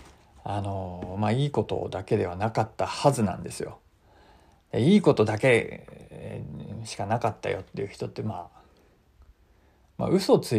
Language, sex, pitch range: Japanese, male, 95-125 Hz